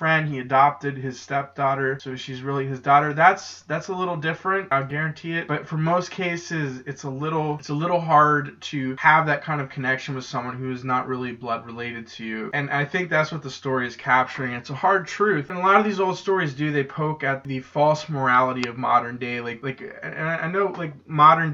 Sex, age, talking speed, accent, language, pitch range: male, 20-39, 230 wpm, American, English, 135-160 Hz